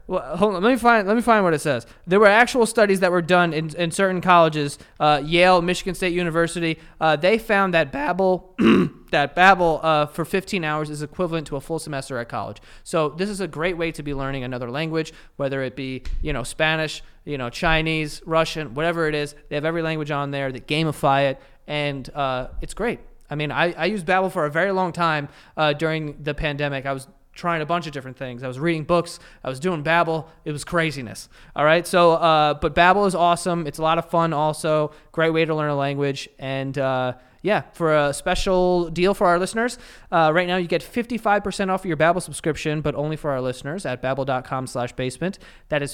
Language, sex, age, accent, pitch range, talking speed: English, male, 20-39, American, 145-180 Hz, 220 wpm